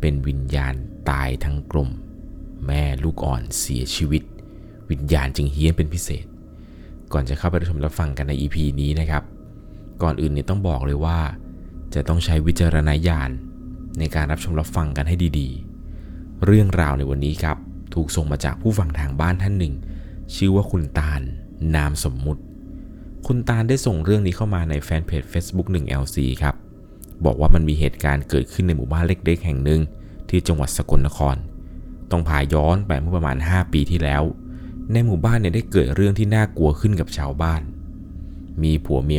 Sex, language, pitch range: male, Thai, 70-90 Hz